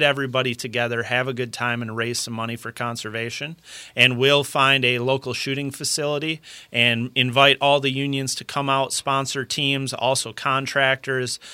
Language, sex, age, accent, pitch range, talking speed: English, male, 30-49, American, 120-140 Hz, 160 wpm